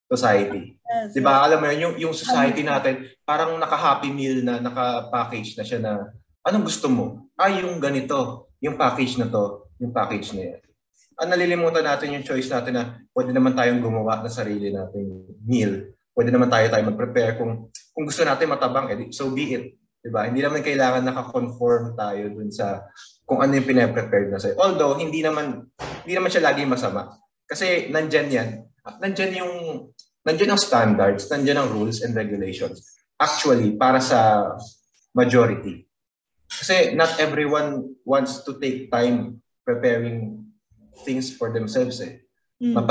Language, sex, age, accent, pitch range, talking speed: Filipino, male, 20-39, native, 115-155 Hz, 155 wpm